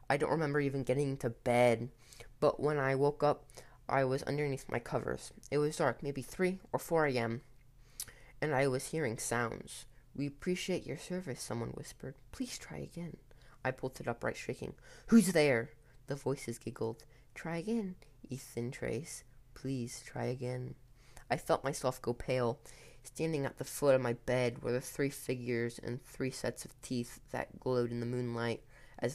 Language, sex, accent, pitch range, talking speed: English, female, American, 120-140 Hz, 170 wpm